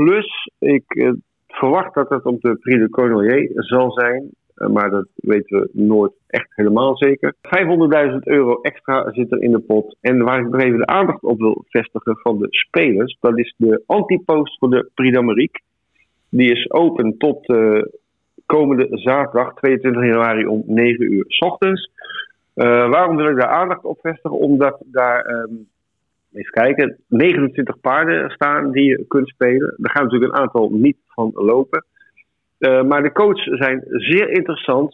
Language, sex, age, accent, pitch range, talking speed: Dutch, male, 50-69, Dutch, 120-150 Hz, 170 wpm